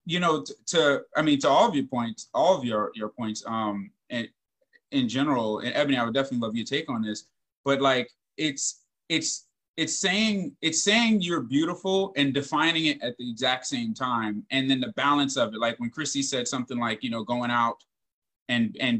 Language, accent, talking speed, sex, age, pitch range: English, American, 210 wpm, male, 30-49, 125-185 Hz